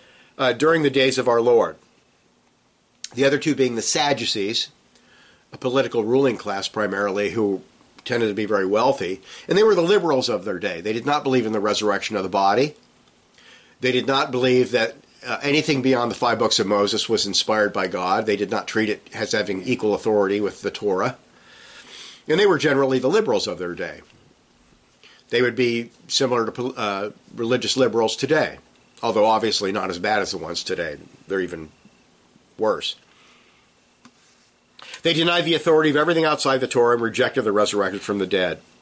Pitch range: 110-150 Hz